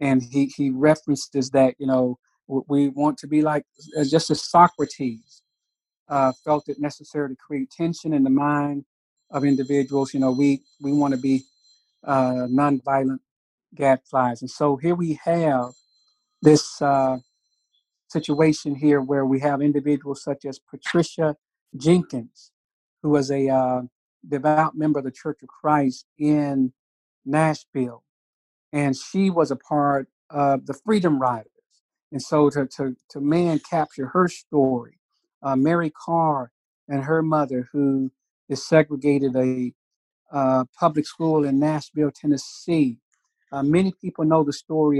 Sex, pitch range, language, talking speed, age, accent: male, 135-155 Hz, English, 140 wpm, 50-69, American